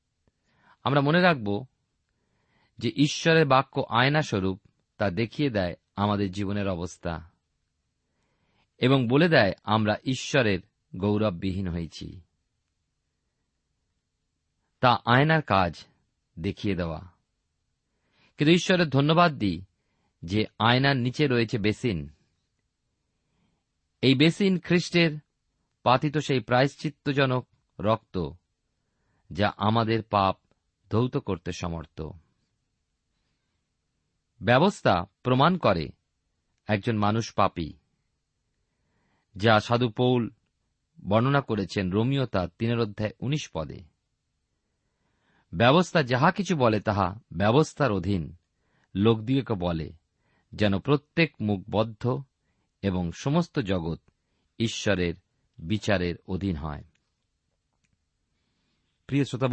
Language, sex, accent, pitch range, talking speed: Bengali, male, native, 90-135 Hz, 85 wpm